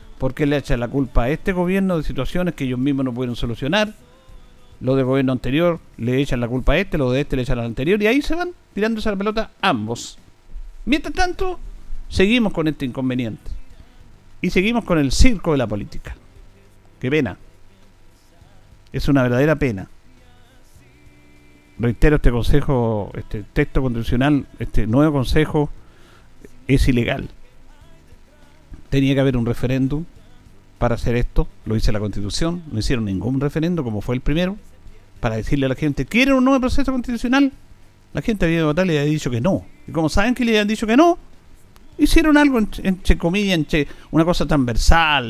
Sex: male